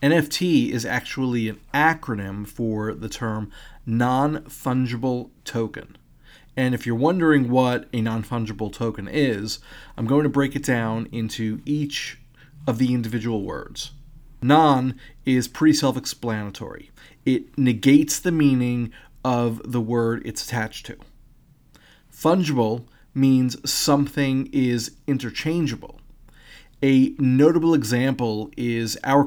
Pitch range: 115-145 Hz